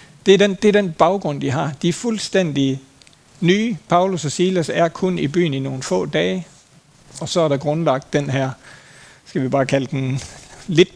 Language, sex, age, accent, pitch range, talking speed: Danish, male, 60-79, native, 135-170 Hz, 190 wpm